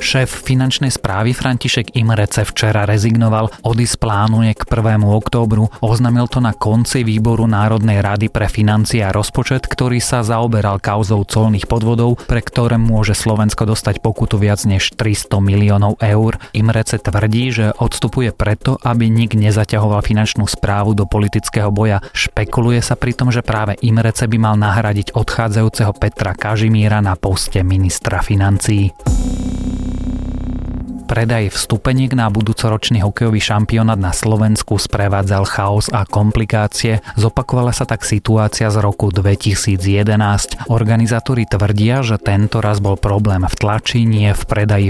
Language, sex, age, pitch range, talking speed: Slovak, male, 30-49, 100-115 Hz, 135 wpm